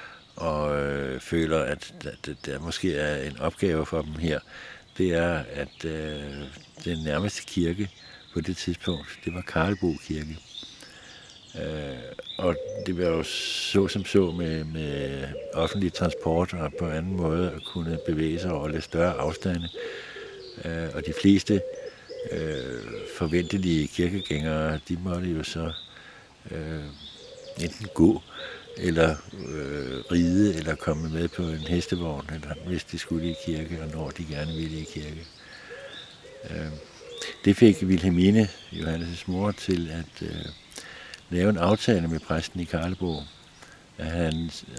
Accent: native